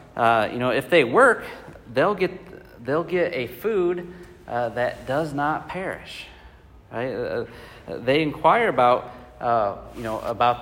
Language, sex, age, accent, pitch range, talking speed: English, male, 40-59, American, 110-140 Hz, 160 wpm